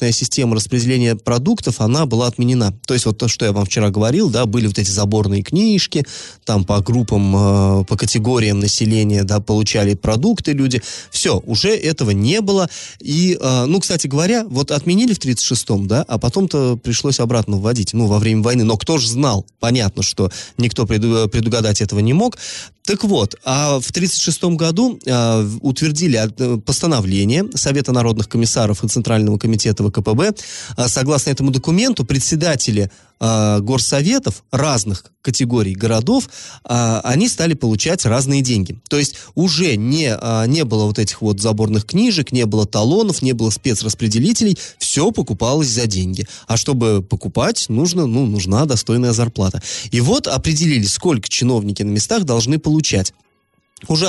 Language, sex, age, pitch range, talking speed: Russian, male, 20-39, 110-145 Hz, 150 wpm